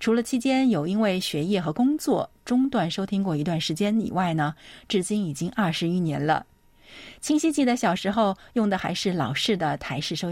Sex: female